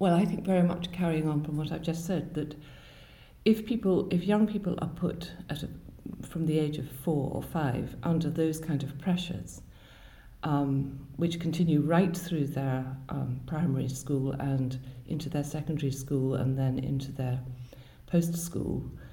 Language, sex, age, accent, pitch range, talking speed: English, female, 60-79, British, 135-170 Hz, 165 wpm